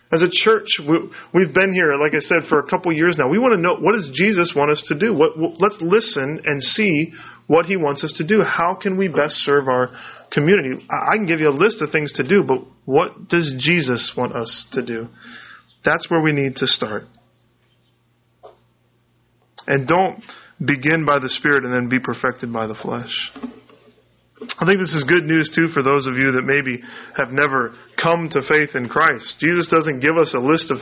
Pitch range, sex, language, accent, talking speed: 130-175 Hz, male, English, American, 205 wpm